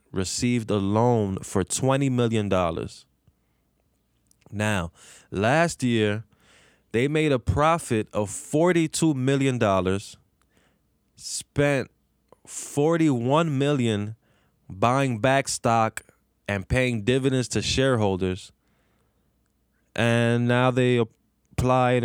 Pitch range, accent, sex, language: 100-125 Hz, American, male, English